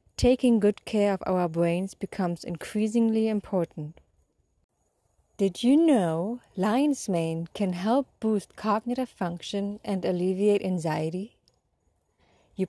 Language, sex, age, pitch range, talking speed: English, female, 20-39, 180-235 Hz, 110 wpm